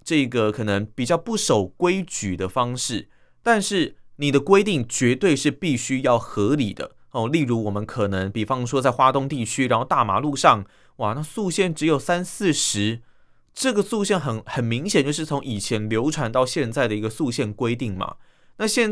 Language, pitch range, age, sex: Chinese, 120-175 Hz, 30-49, male